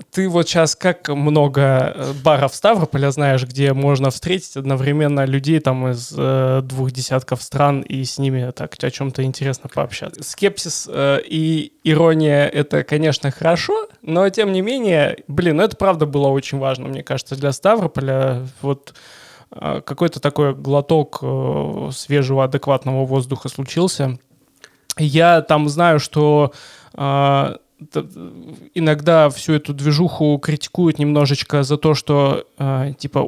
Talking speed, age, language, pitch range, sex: 130 wpm, 20-39, Russian, 135-155 Hz, male